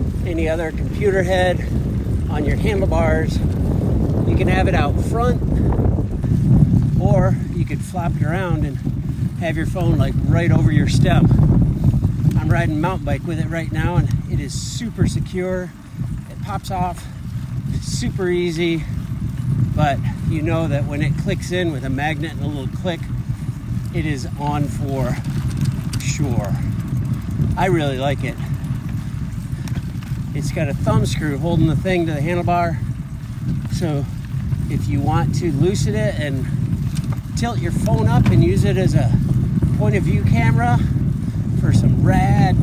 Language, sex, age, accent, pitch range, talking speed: English, male, 50-69, American, 130-150 Hz, 150 wpm